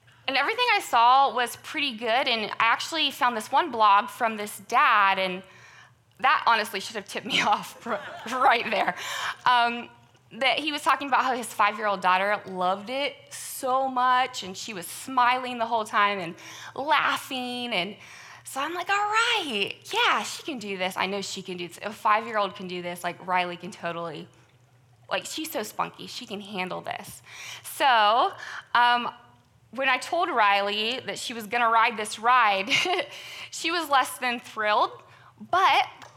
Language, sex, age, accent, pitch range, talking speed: English, female, 20-39, American, 200-270 Hz, 170 wpm